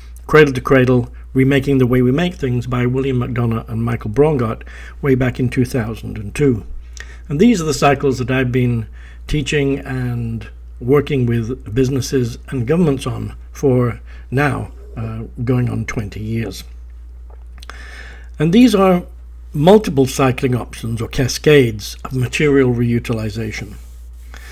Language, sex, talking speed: English, male, 130 wpm